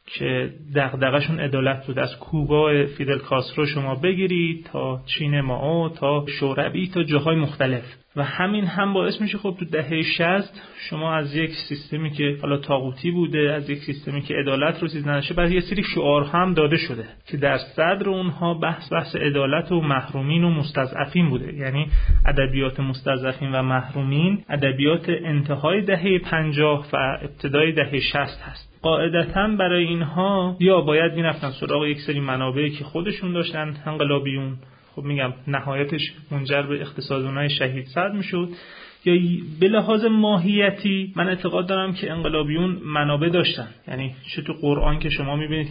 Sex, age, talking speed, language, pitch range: male, 30-49, 155 wpm, Persian, 140-170 Hz